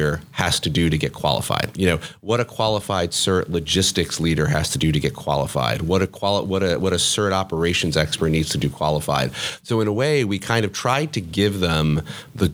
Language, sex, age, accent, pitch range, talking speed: English, male, 30-49, American, 80-105 Hz, 220 wpm